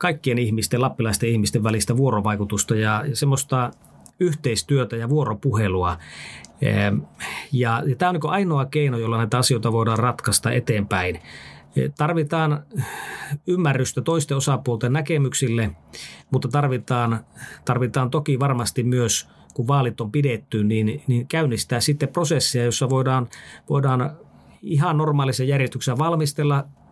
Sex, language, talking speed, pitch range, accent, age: male, Finnish, 110 wpm, 120-150 Hz, native, 30-49